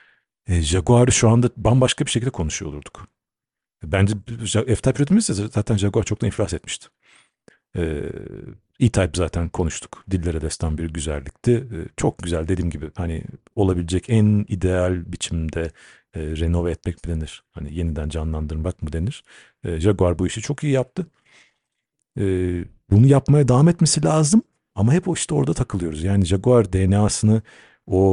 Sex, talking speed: male, 145 wpm